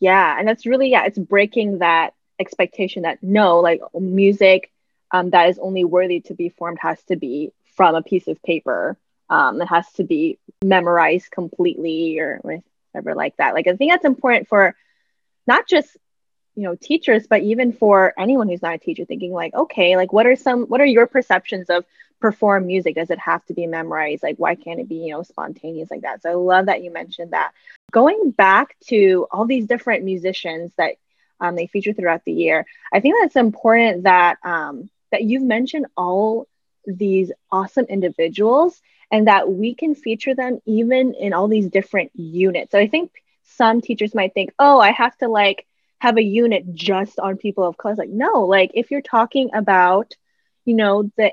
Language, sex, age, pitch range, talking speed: English, female, 10-29, 185-240 Hz, 195 wpm